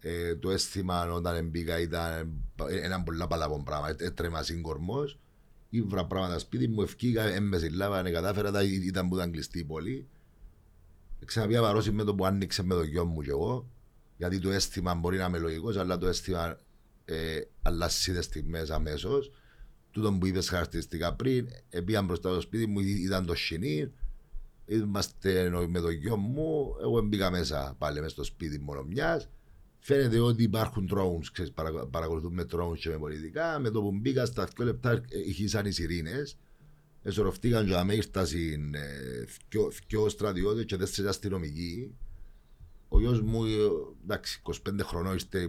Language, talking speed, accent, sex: Greek, 130 wpm, Spanish, male